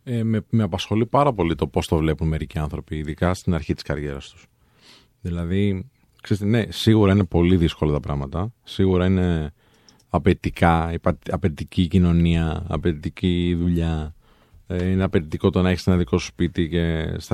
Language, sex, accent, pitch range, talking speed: Greek, male, native, 80-110 Hz, 150 wpm